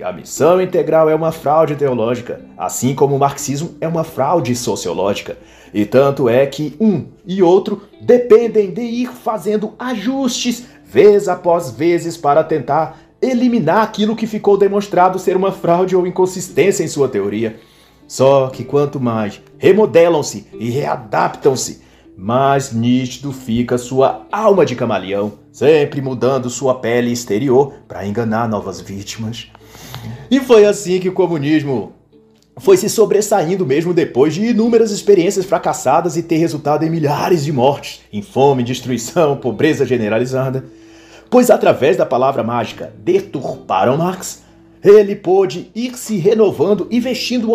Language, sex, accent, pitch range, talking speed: Portuguese, male, Brazilian, 130-195 Hz, 140 wpm